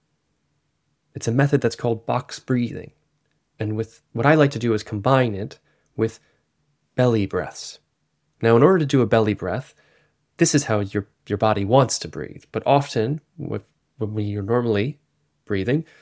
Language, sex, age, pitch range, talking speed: English, male, 20-39, 110-145 Hz, 160 wpm